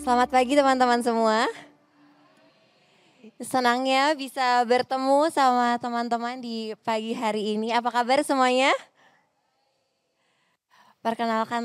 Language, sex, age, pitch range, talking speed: Indonesian, female, 20-39, 190-240 Hz, 90 wpm